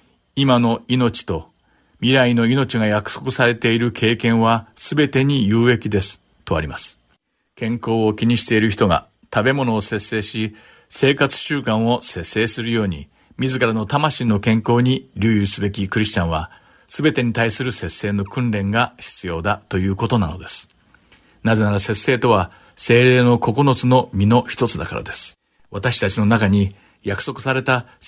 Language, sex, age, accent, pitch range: English, male, 50-69, Japanese, 105-125 Hz